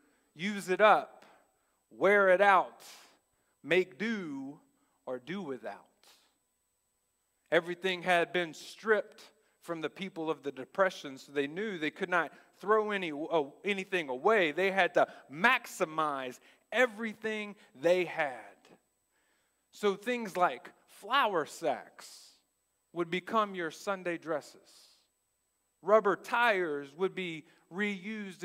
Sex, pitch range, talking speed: male, 145-195 Hz, 115 wpm